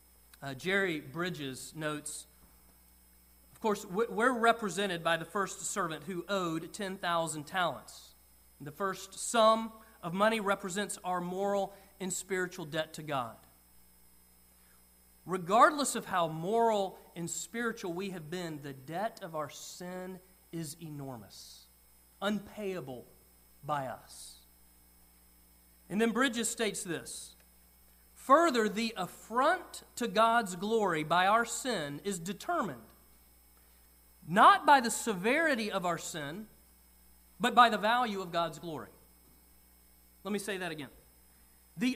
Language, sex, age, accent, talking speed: English, male, 40-59, American, 120 wpm